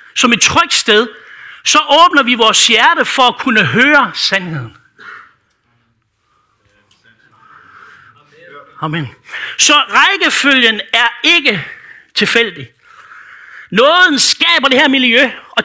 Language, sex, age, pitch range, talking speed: Danish, male, 60-79, 215-300 Hz, 100 wpm